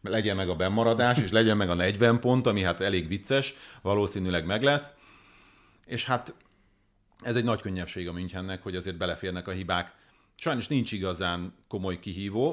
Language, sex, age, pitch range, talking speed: Hungarian, male, 40-59, 90-110 Hz, 170 wpm